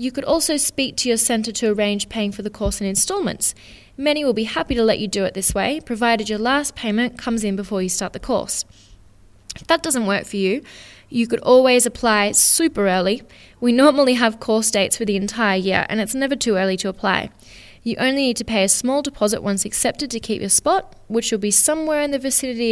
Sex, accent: female, Australian